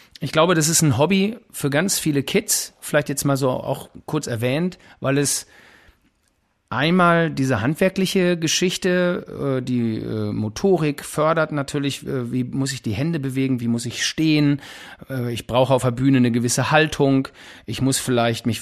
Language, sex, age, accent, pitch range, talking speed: German, male, 40-59, German, 120-150 Hz, 160 wpm